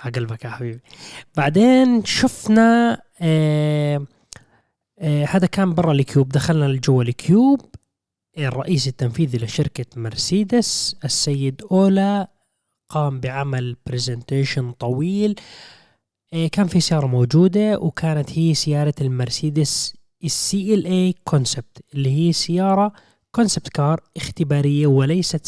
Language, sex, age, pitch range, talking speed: Arabic, male, 20-39, 135-175 Hz, 105 wpm